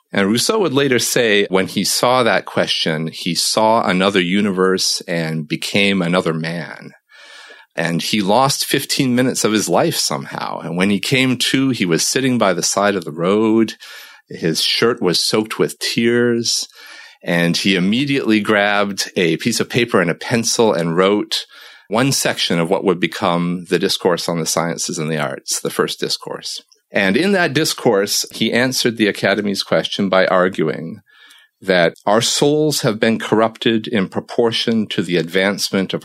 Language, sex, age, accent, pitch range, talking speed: English, male, 40-59, American, 90-120 Hz, 165 wpm